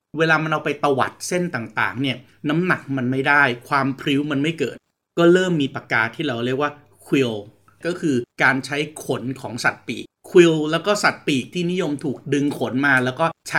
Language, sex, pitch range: Thai, male, 125-160 Hz